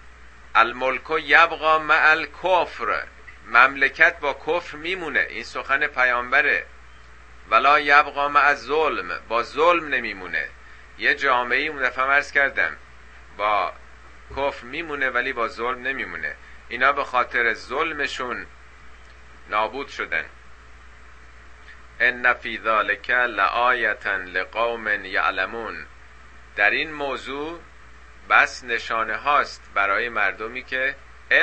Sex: male